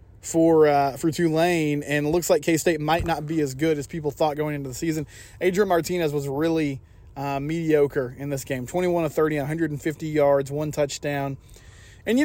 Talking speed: 190 wpm